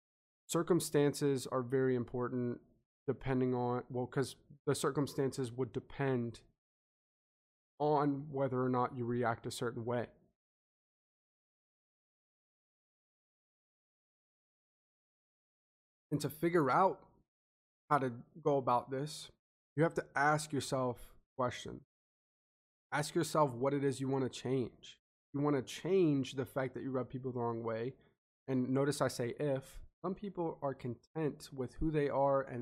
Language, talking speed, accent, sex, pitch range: English, 130 wpm, American, male, 125-145 Hz